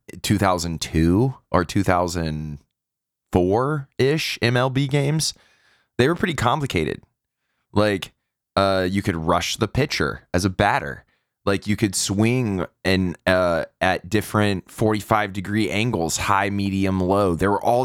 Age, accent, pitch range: 20-39, American, 90-120 Hz